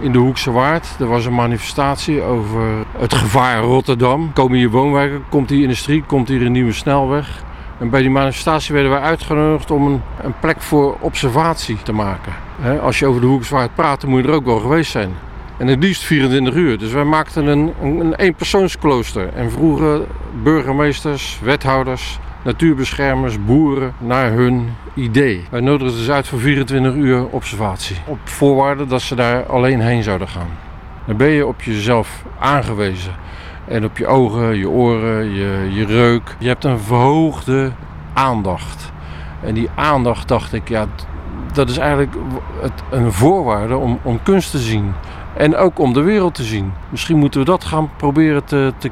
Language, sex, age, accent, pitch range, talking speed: Dutch, male, 50-69, Dutch, 110-145 Hz, 175 wpm